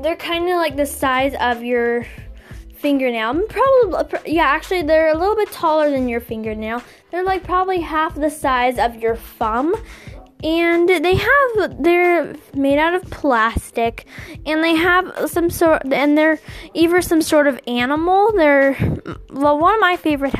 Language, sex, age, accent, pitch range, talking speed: English, female, 10-29, American, 250-335 Hz, 160 wpm